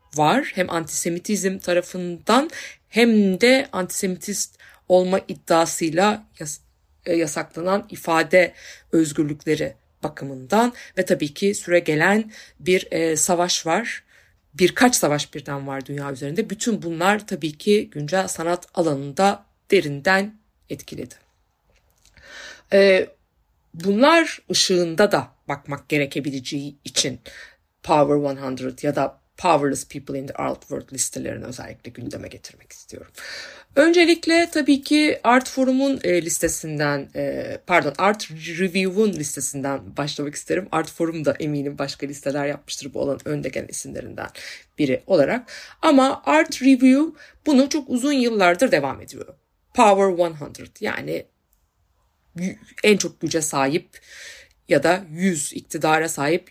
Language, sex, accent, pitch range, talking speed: Turkish, female, native, 145-200 Hz, 110 wpm